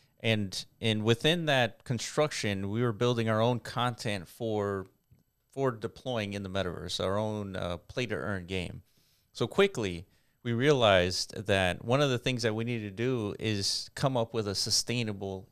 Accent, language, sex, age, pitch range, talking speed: American, English, male, 30-49, 100-130 Hz, 170 wpm